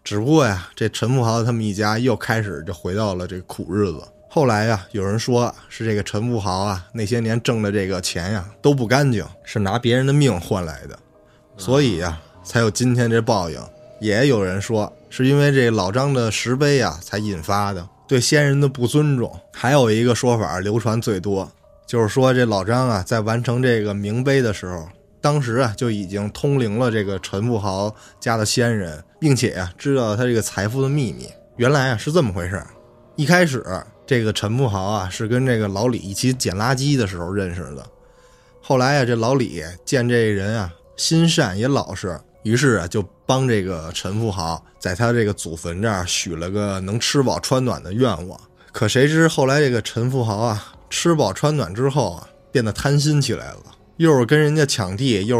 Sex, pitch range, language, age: male, 100-130 Hz, Chinese, 20-39